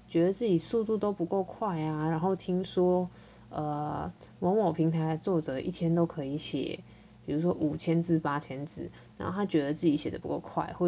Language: Chinese